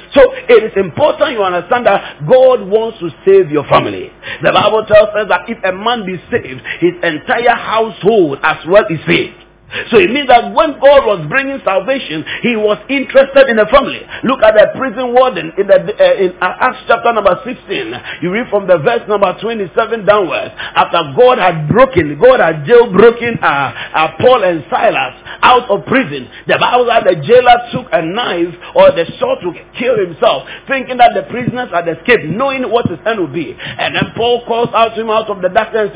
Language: English